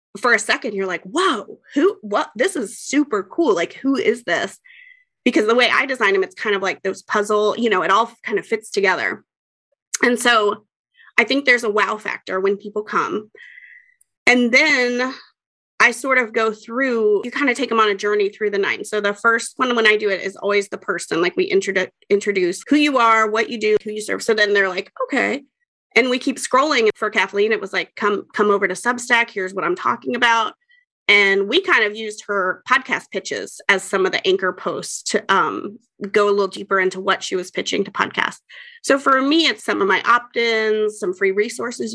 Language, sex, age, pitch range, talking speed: English, female, 30-49, 205-270 Hz, 215 wpm